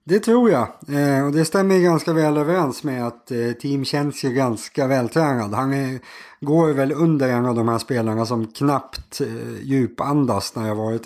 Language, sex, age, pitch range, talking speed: Swedish, male, 30-49, 120-150 Hz, 195 wpm